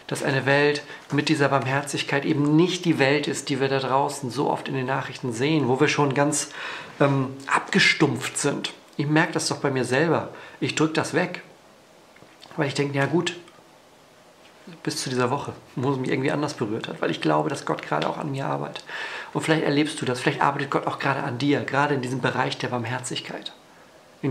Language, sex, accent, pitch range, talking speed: German, male, German, 135-155 Hz, 210 wpm